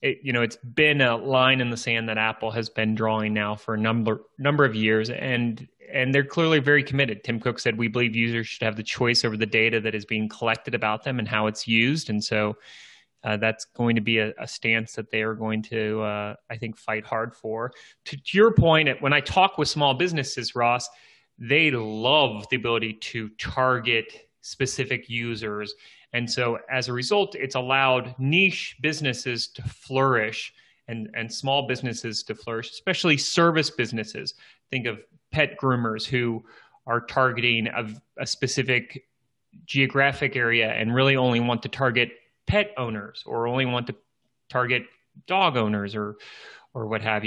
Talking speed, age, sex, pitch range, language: 180 wpm, 30-49, male, 110-130 Hz, English